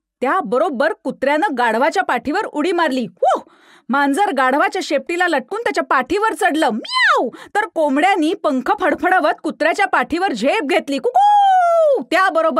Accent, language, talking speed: native, Marathi, 105 wpm